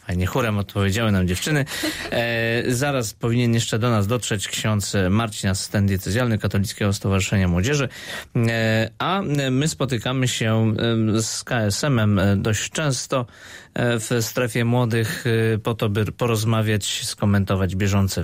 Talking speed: 115 wpm